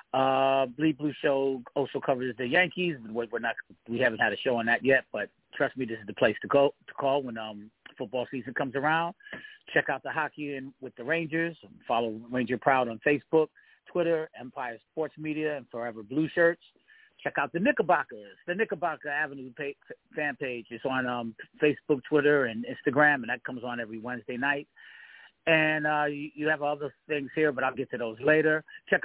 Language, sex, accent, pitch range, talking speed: English, male, American, 120-150 Hz, 195 wpm